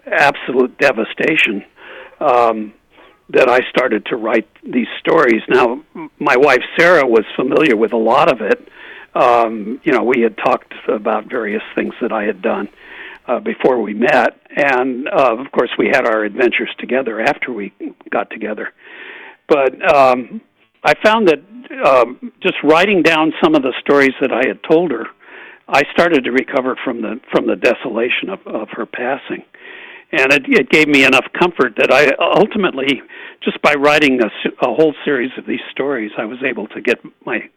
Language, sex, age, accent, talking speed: English, male, 60-79, American, 170 wpm